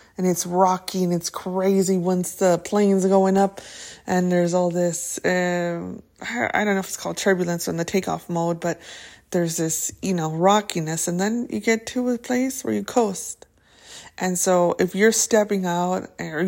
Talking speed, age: 180 wpm, 20-39